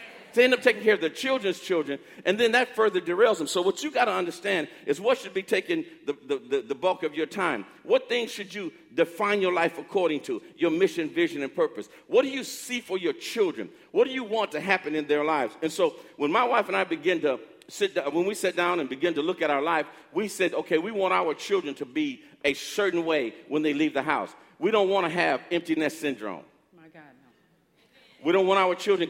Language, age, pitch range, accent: English, 50-69, 170-275 Hz, American